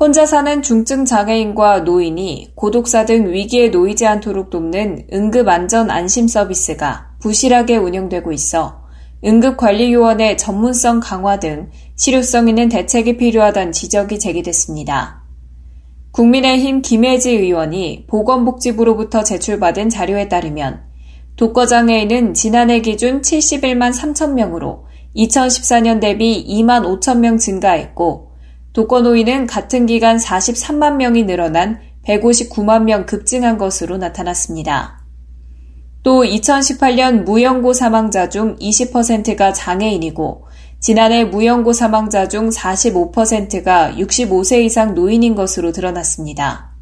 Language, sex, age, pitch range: Korean, female, 10-29, 180-235 Hz